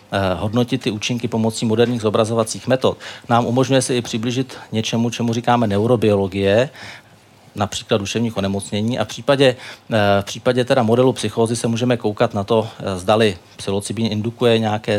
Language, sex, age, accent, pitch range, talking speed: Czech, male, 40-59, native, 100-115 Hz, 145 wpm